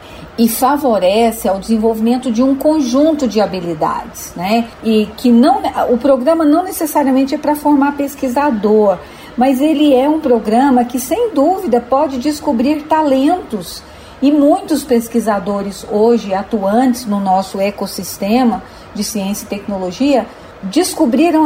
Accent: Brazilian